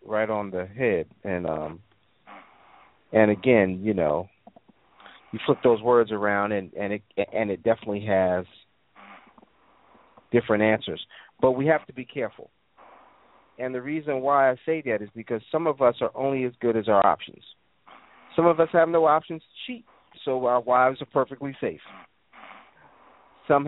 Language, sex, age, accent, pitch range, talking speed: English, male, 40-59, American, 110-145 Hz, 160 wpm